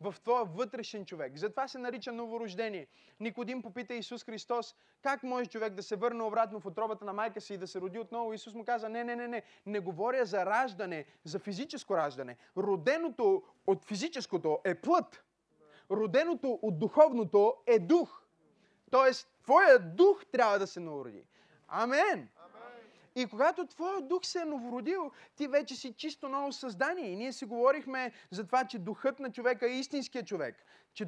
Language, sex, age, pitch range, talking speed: Bulgarian, male, 20-39, 220-270 Hz, 170 wpm